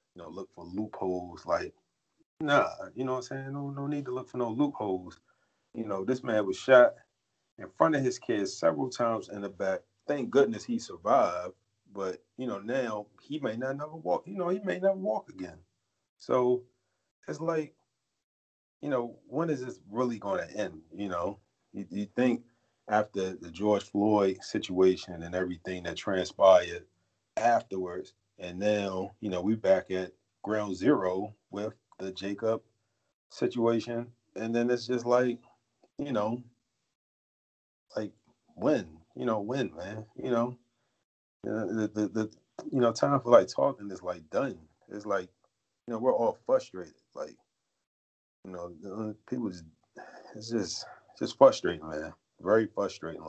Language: English